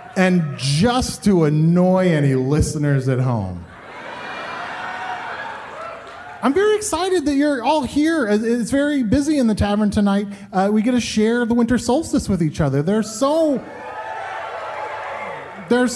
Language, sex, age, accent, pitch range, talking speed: English, male, 30-49, American, 155-235 Hz, 135 wpm